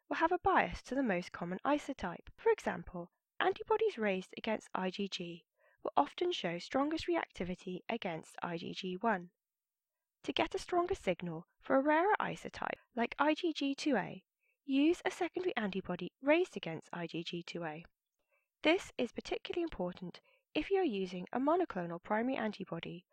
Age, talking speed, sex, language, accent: 10-29, 135 wpm, female, English, British